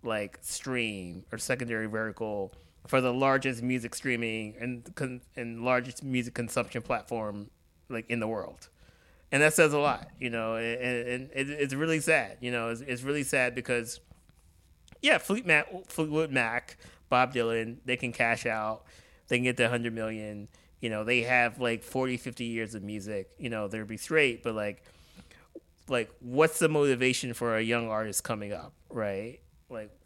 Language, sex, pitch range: English, male, 110-130 Hz